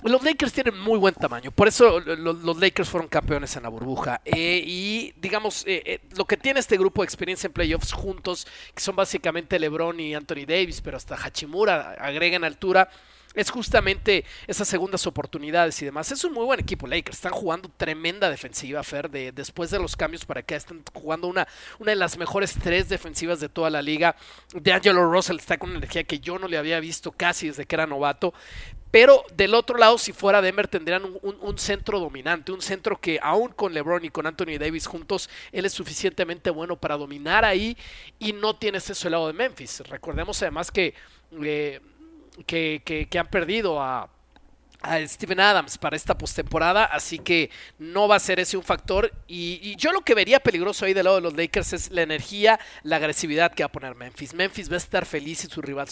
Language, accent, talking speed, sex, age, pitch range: Spanish, Mexican, 210 wpm, male, 40-59, 160-200 Hz